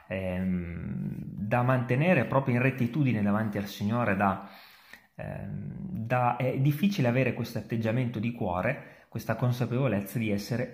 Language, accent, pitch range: Italian, native, 100-150 Hz